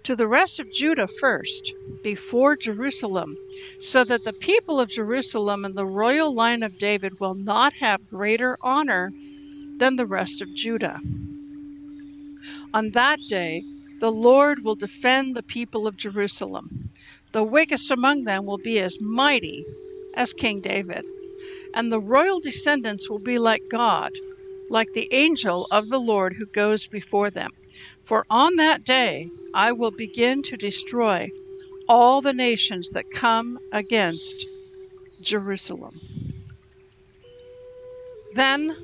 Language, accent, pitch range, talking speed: English, American, 210-290 Hz, 135 wpm